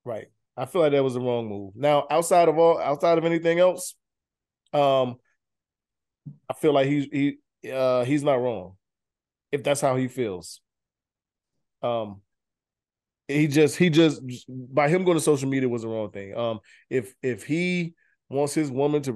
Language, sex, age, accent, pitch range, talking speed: English, male, 20-39, American, 120-140 Hz, 170 wpm